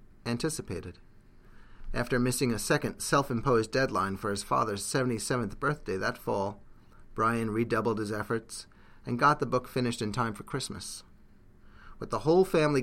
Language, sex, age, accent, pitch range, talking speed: English, male, 30-49, American, 100-130 Hz, 145 wpm